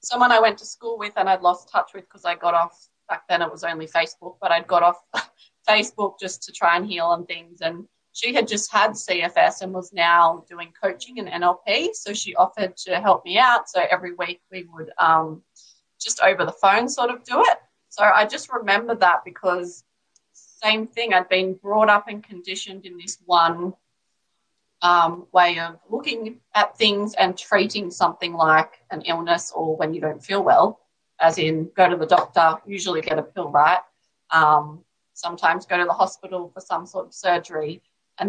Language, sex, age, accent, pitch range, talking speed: English, female, 20-39, Australian, 175-210 Hz, 195 wpm